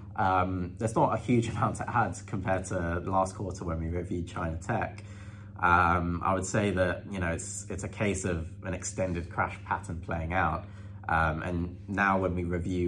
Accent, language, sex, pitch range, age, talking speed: British, English, male, 90-100 Hz, 20-39, 190 wpm